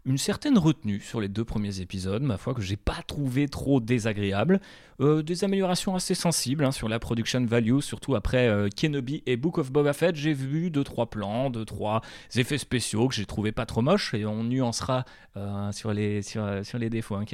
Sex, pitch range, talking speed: male, 110-150 Hz, 215 wpm